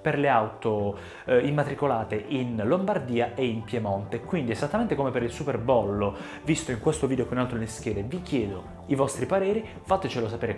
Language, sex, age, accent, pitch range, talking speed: Italian, male, 20-39, native, 115-145 Hz, 170 wpm